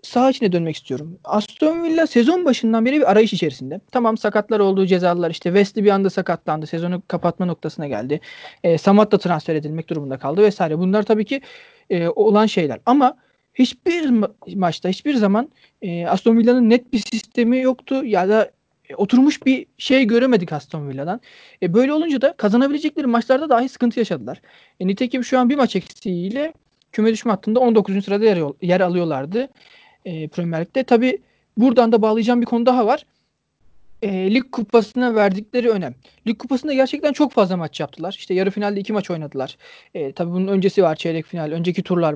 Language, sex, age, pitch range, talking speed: Turkish, male, 40-59, 180-245 Hz, 170 wpm